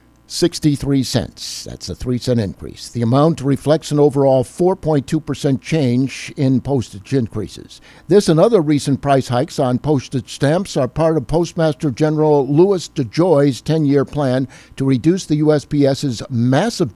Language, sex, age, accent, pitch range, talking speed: English, male, 60-79, American, 125-155 Hz, 145 wpm